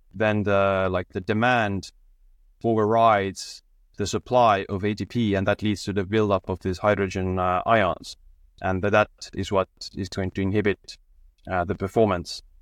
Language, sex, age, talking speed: English, male, 20-39, 150 wpm